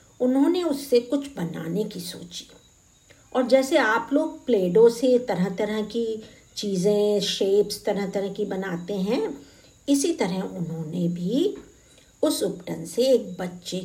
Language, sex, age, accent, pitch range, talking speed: Hindi, female, 50-69, native, 180-255 Hz, 135 wpm